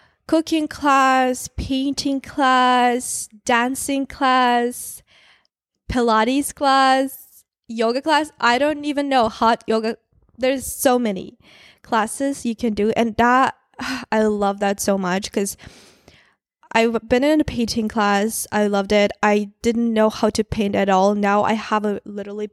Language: English